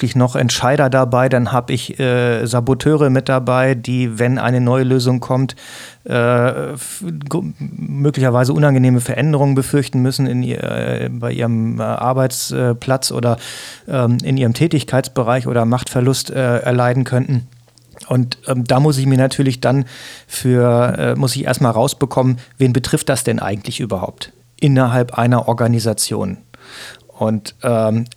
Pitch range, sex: 120-135 Hz, male